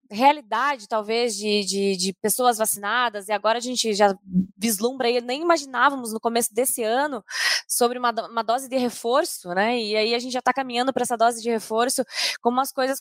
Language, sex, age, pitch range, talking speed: Portuguese, female, 20-39, 220-265 Hz, 195 wpm